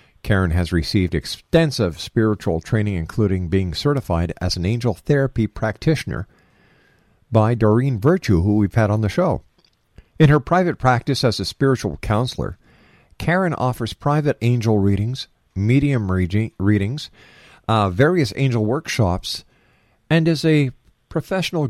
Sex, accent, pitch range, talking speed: male, American, 100-125 Hz, 125 wpm